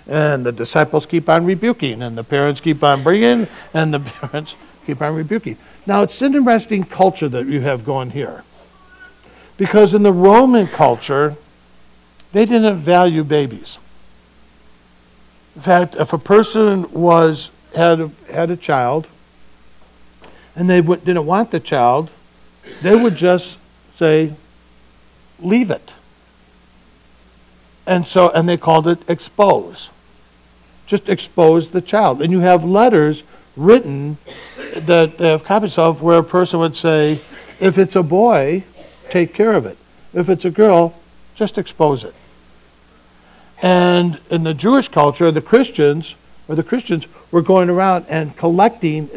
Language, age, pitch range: English, 60-79, 135-185 Hz